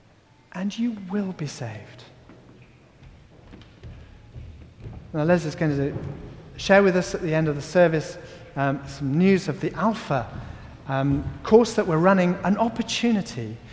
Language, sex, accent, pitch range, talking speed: English, male, British, 130-200 Hz, 140 wpm